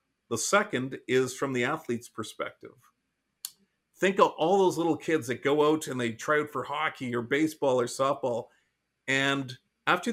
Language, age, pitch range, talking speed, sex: English, 50-69, 125-155 Hz, 165 wpm, male